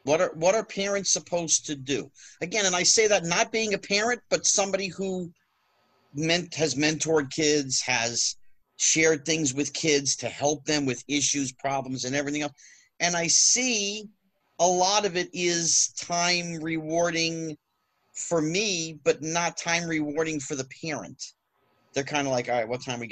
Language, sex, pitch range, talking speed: English, male, 135-175 Hz, 175 wpm